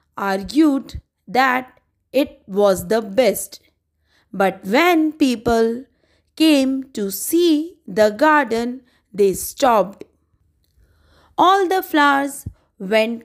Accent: Indian